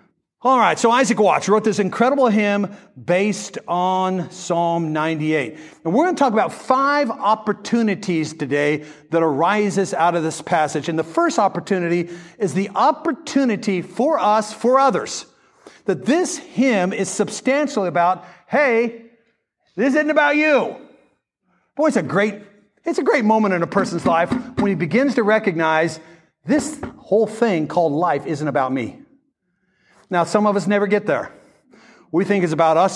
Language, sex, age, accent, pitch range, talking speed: English, male, 50-69, American, 180-250 Hz, 160 wpm